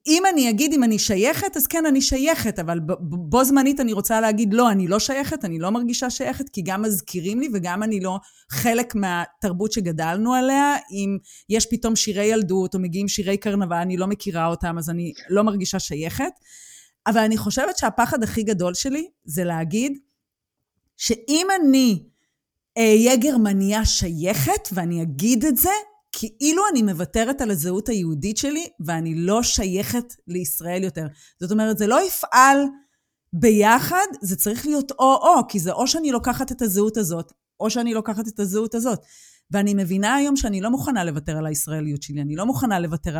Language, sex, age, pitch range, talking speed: Hebrew, female, 30-49, 185-265 Hz, 170 wpm